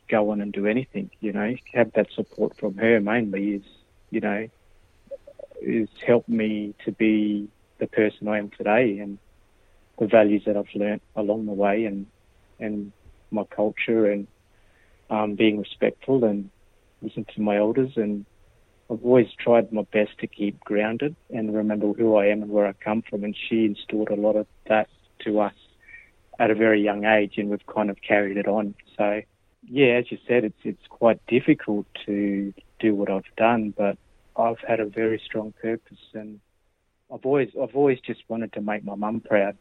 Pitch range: 100-115 Hz